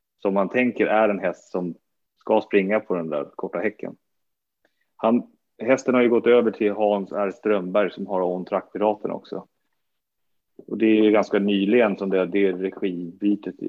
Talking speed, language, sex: 165 wpm, Swedish, male